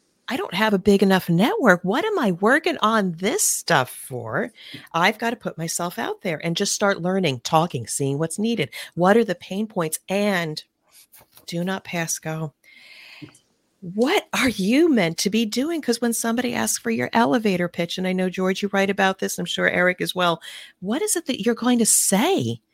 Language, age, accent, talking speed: English, 40-59, American, 200 wpm